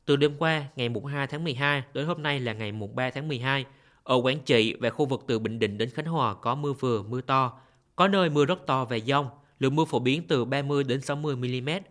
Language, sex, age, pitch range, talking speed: Vietnamese, male, 20-39, 125-155 Hz, 255 wpm